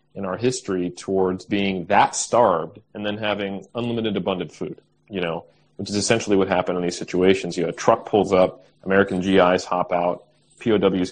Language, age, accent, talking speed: English, 30-49, American, 185 wpm